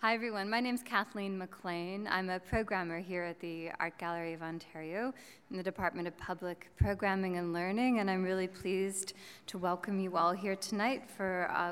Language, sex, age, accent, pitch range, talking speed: English, female, 20-39, American, 175-205 Hz, 190 wpm